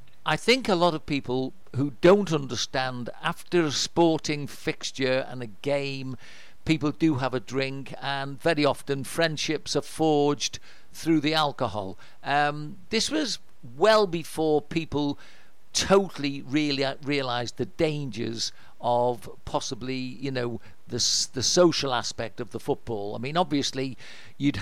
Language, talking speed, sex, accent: English, 135 wpm, male, British